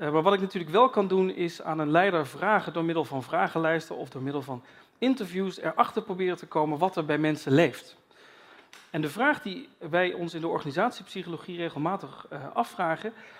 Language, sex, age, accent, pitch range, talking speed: Dutch, male, 40-59, Dutch, 160-210 Hz, 195 wpm